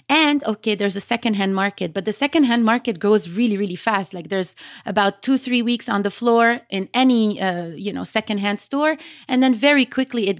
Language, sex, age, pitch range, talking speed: English, female, 30-49, 195-240 Hz, 200 wpm